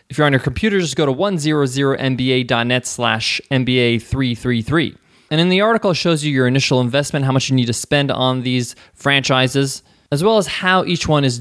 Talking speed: 195 wpm